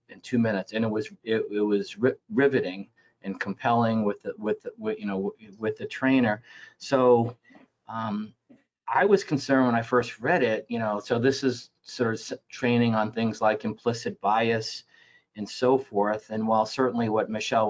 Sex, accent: male, American